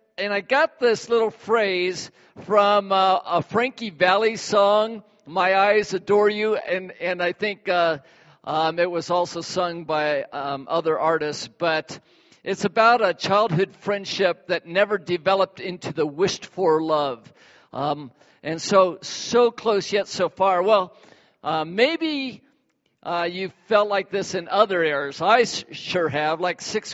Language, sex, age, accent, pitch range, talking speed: English, male, 50-69, American, 170-210 Hz, 150 wpm